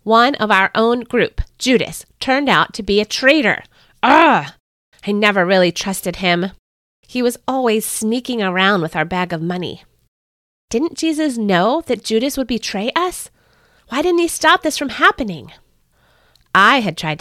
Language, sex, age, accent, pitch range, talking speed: English, female, 30-49, American, 170-235 Hz, 155 wpm